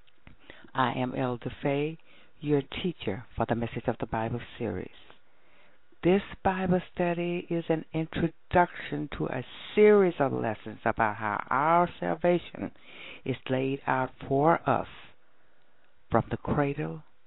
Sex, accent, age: female, American, 60-79